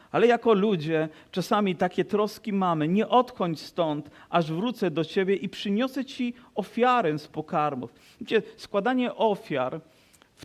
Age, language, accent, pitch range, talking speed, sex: 40-59, Polish, native, 160-205 Hz, 140 wpm, male